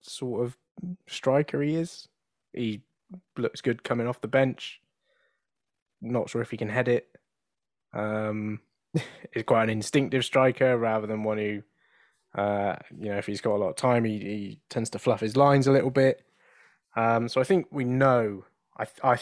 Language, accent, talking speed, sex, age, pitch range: English, British, 175 wpm, male, 10-29, 105-125 Hz